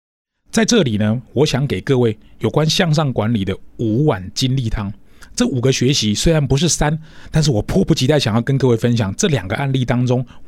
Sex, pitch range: male, 105-155 Hz